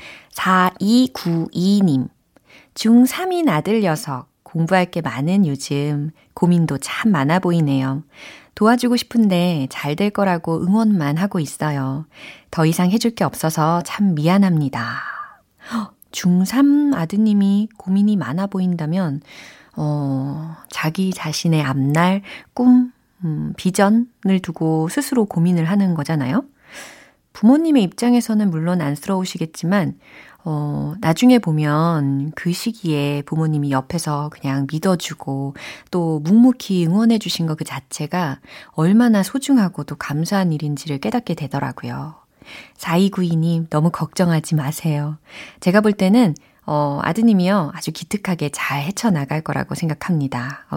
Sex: female